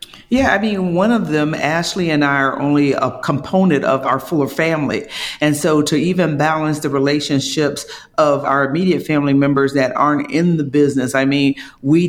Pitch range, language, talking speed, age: 140-160 Hz, English, 185 wpm, 40-59